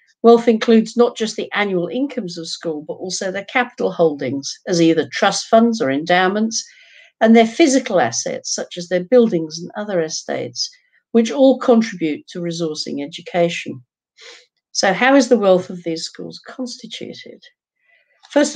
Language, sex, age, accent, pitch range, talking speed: English, female, 50-69, British, 175-245 Hz, 150 wpm